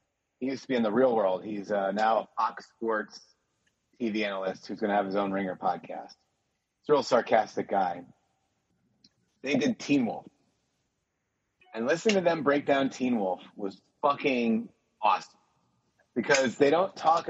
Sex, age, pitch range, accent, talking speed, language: male, 30-49, 110-135 Hz, American, 165 wpm, English